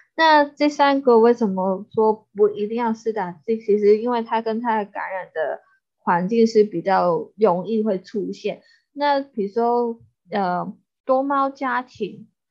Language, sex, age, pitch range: Chinese, female, 20-39, 190-230 Hz